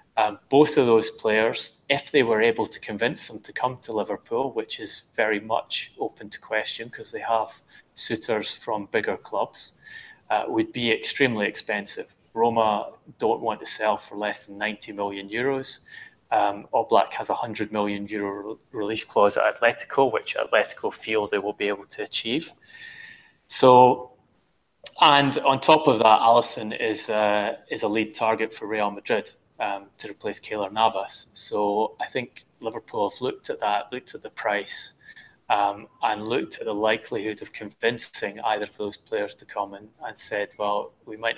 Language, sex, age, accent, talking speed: English, male, 30-49, British, 175 wpm